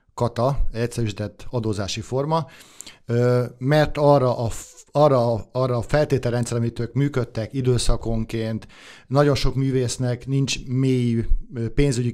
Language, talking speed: Hungarian, 105 wpm